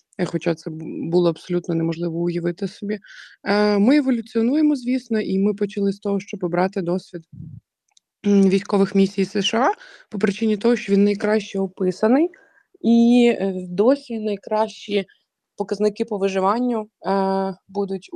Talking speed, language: 115 wpm, Ukrainian